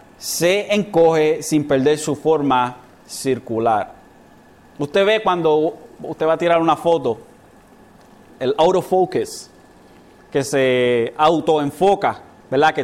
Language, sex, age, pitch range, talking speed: Spanish, male, 30-49, 150-200 Hz, 105 wpm